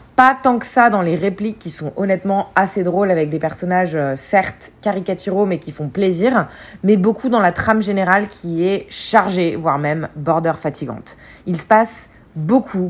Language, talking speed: French, 175 wpm